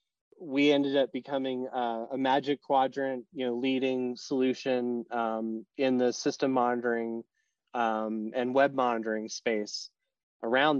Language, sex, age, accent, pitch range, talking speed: English, male, 30-49, American, 130-170 Hz, 130 wpm